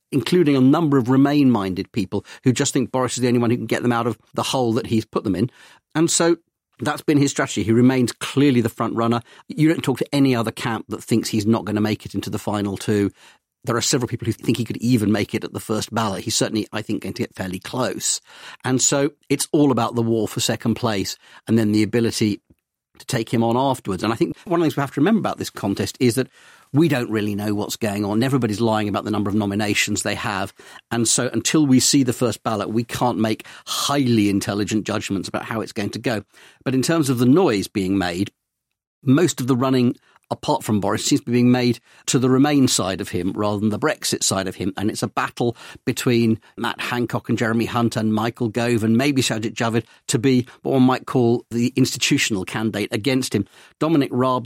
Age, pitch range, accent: 40-59, 110-130 Hz, British